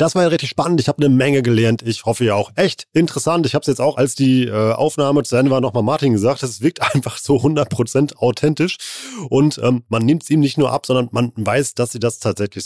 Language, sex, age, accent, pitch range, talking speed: German, male, 30-49, German, 115-145 Hz, 245 wpm